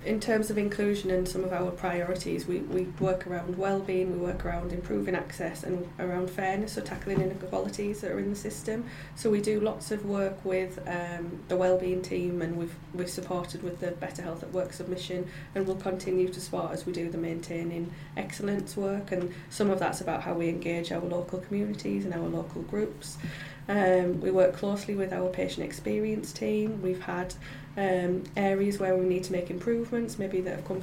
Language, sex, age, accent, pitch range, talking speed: English, female, 20-39, British, 175-190 Hz, 200 wpm